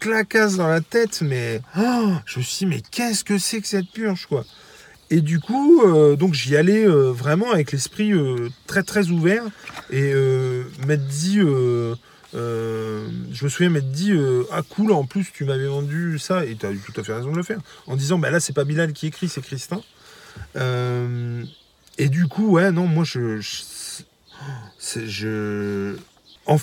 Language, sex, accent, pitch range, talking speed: French, male, French, 120-180 Hz, 205 wpm